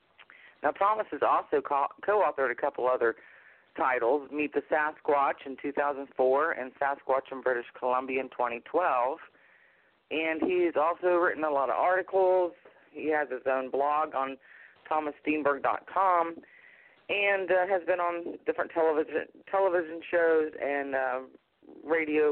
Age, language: 40-59, English